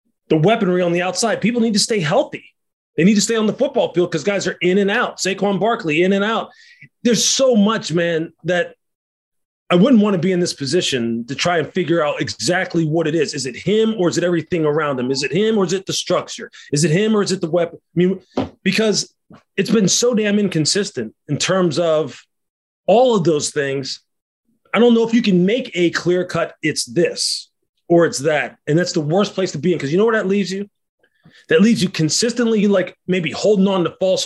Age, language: 30-49, English